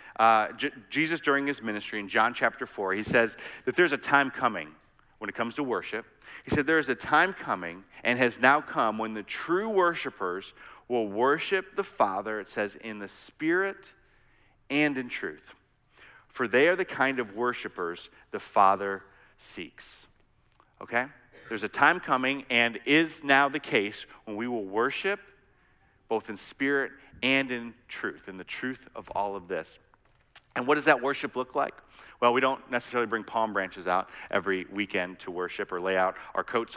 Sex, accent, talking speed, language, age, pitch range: male, American, 180 wpm, English, 40-59, 110-145 Hz